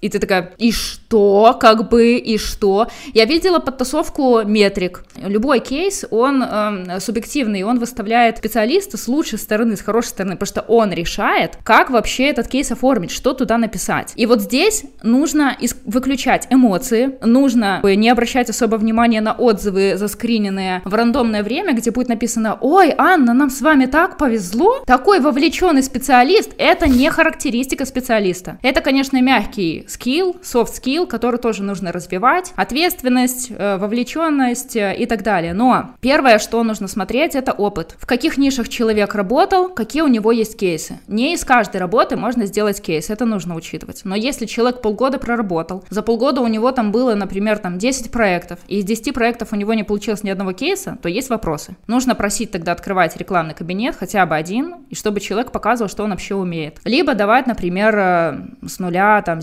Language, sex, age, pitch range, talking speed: Ukrainian, female, 20-39, 205-255 Hz, 170 wpm